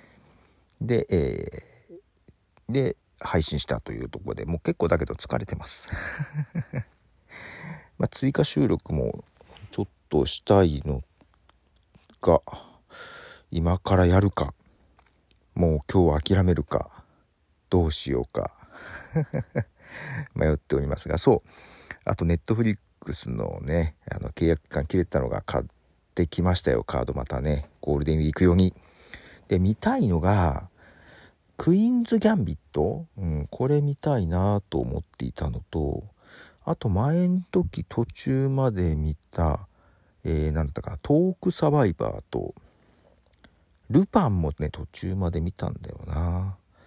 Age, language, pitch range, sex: 50-69, Japanese, 80-125 Hz, male